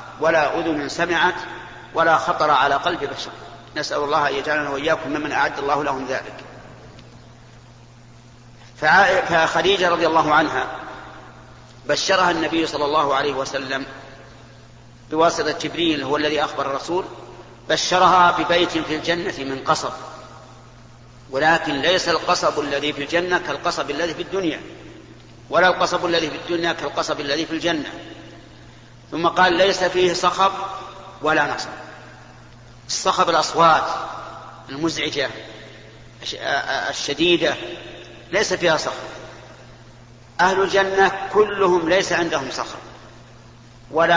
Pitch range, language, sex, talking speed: 135-170 Hz, Arabic, male, 110 wpm